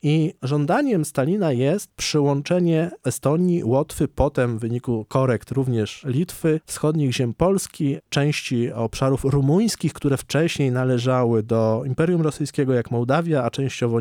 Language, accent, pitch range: Polish, native, 120-150 Hz